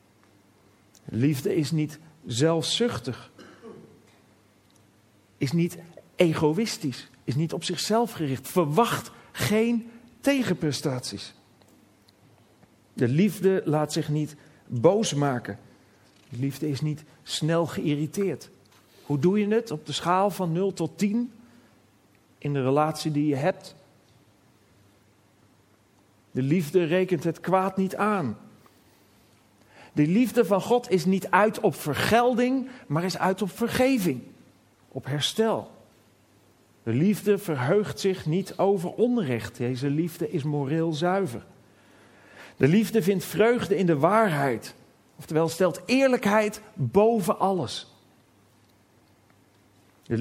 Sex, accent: male, Dutch